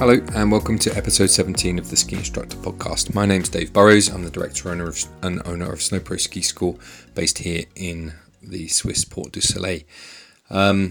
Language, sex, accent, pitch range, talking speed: English, male, British, 90-100 Hz, 200 wpm